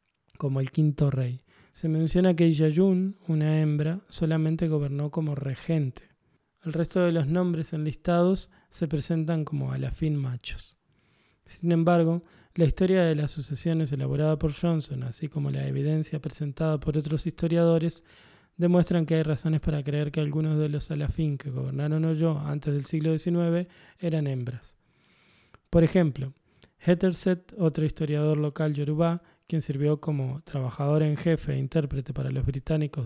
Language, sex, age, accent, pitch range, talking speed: Spanish, male, 20-39, Argentinian, 145-165 Hz, 145 wpm